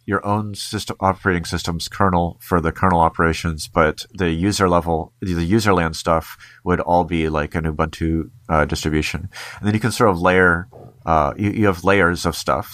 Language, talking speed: English, 190 wpm